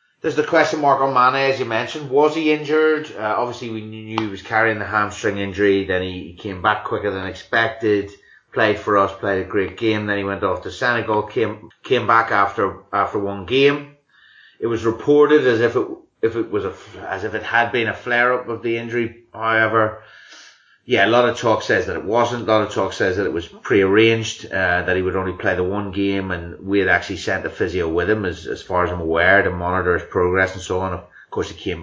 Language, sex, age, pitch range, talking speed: English, male, 30-49, 100-130 Hz, 235 wpm